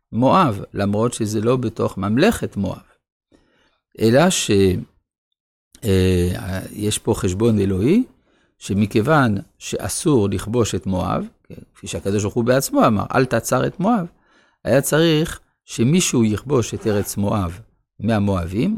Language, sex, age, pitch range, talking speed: Hebrew, male, 50-69, 105-145 Hz, 115 wpm